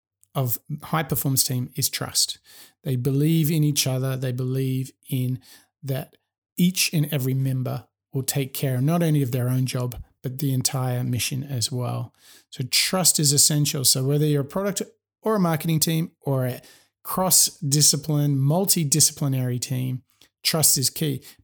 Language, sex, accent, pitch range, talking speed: English, male, Australian, 130-155 Hz, 155 wpm